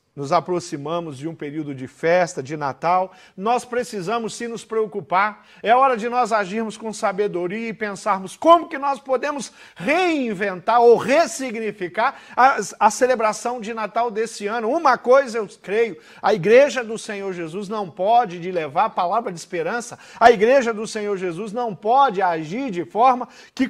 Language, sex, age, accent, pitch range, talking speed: Portuguese, male, 40-59, Brazilian, 165-235 Hz, 165 wpm